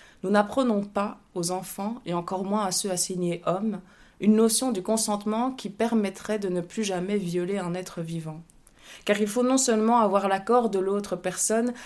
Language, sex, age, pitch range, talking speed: French, female, 20-39, 180-215 Hz, 180 wpm